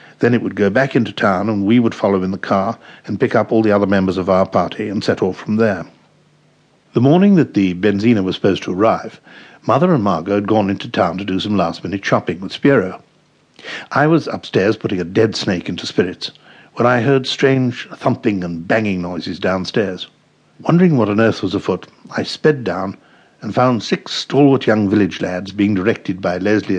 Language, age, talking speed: English, 60-79, 205 wpm